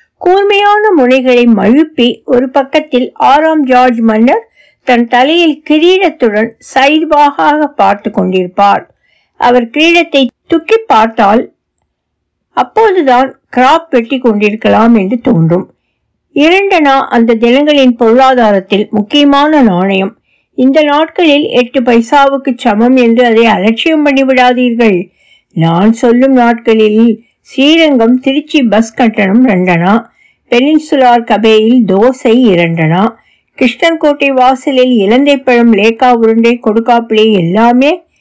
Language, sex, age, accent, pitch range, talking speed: Tamil, female, 60-79, native, 220-285 Hz, 50 wpm